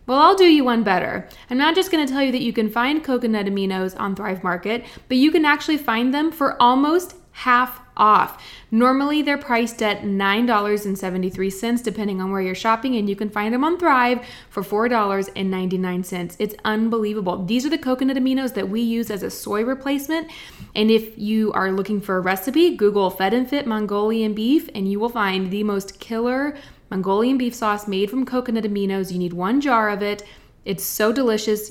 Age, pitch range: 20-39, 205-255 Hz